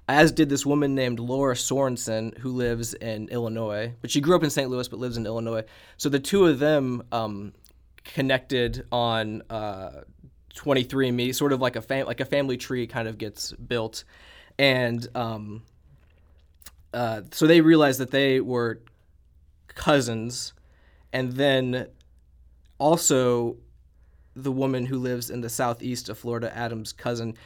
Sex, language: male, English